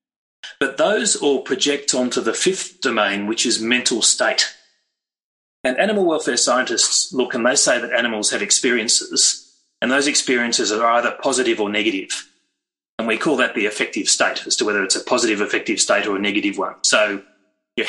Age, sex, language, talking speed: 30-49, male, English, 180 wpm